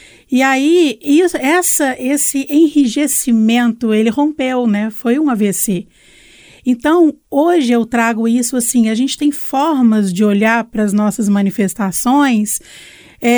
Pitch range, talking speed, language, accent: 215-270 Hz, 115 wpm, Portuguese, Brazilian